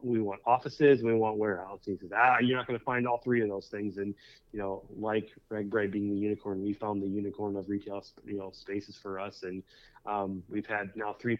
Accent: American